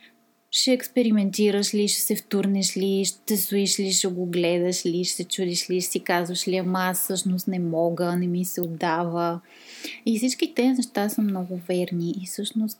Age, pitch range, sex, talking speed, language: 20-39, 175-215 Hz, female, 180 wpm, Bulgarian